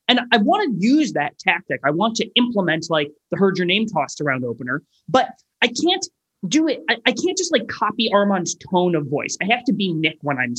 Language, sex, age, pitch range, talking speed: English, male, 30-49, 170-240 Hz, 230 wpm